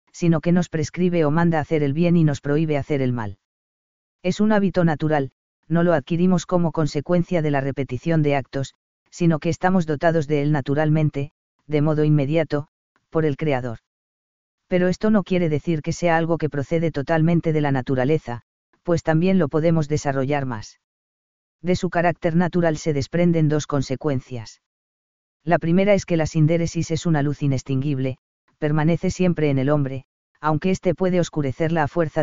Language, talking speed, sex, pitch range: Spanish, 170 wpm, female, 140-170 Hz